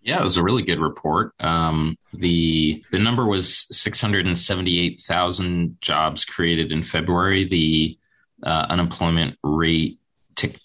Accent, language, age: American, English, 20-39